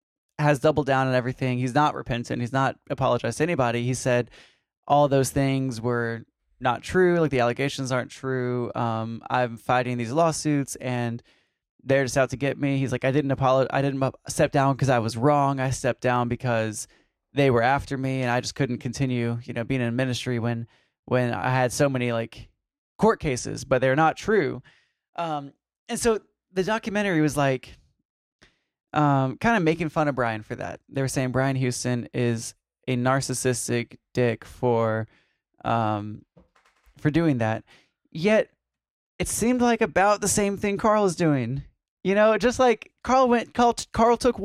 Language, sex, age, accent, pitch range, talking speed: English, male, 20-39, American, 125-185 Hz, 180 wpm